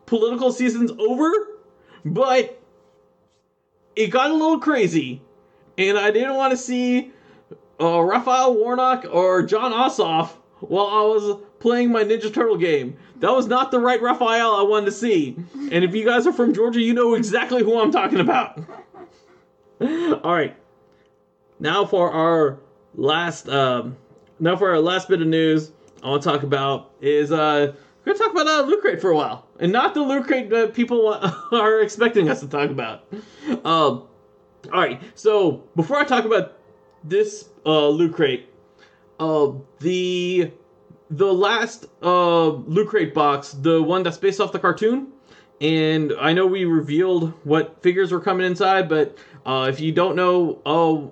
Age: 30-49